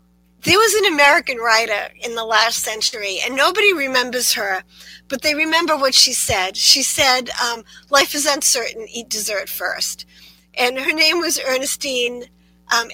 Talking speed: 160 wpm